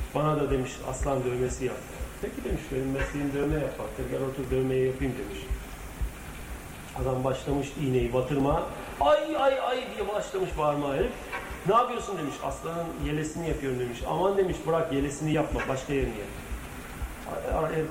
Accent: native